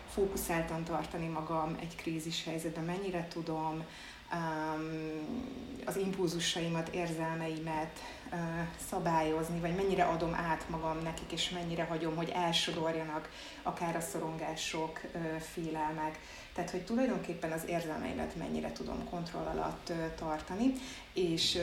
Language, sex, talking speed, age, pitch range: Hungarian, female, 115 wpm, 30-49, 160-180 Hz